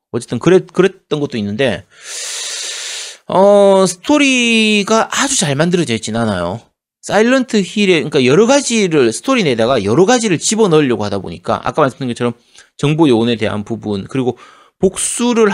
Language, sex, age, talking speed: English, male, 30-49, 125 wpm